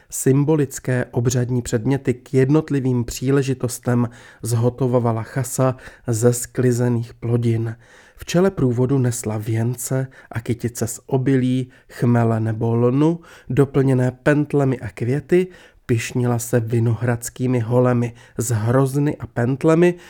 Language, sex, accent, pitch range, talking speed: Czech, male, native, 120-140 Hz, 105 wpm